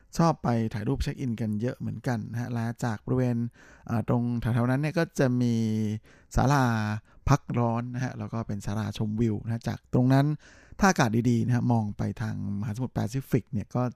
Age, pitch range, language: 20-39, 110-135 Hz, Thai